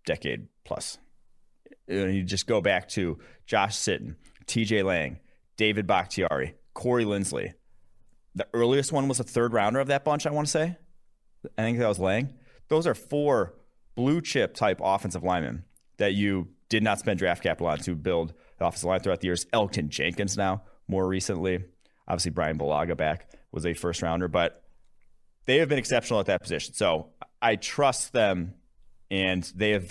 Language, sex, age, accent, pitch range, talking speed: English, male, 30-49, American, 90-115 Hz, 165 wpm